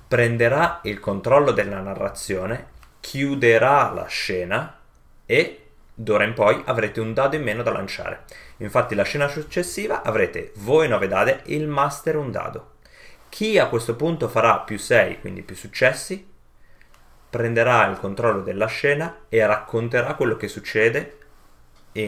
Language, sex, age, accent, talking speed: Italian, male, 30-49, native, 145 wpm